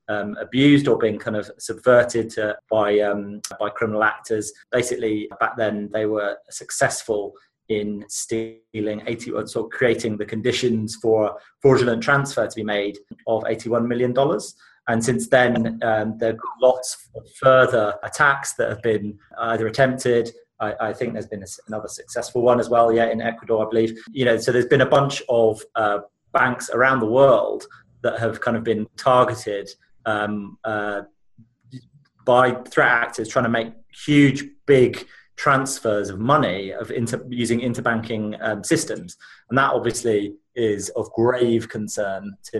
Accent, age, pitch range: British, 30-49, 105-125 Hz